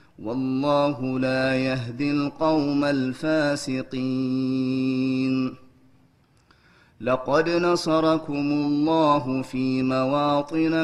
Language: Amharic